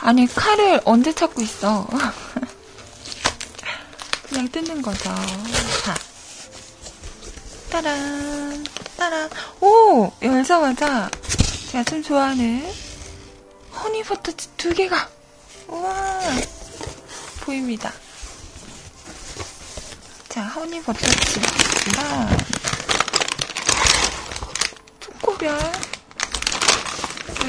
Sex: female